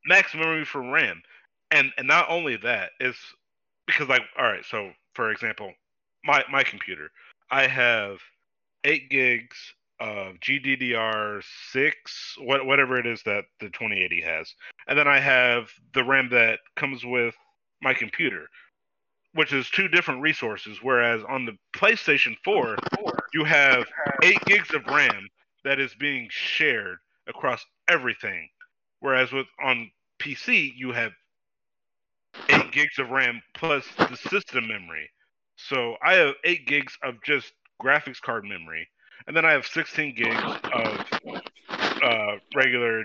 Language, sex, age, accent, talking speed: English, male, 30-49, American, 140 wpm